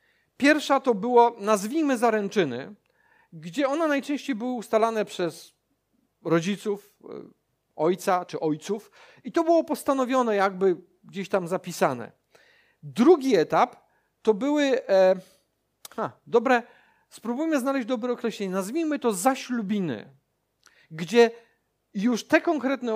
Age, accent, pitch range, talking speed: 50-69, native, 185-260 Hz, 105 wpm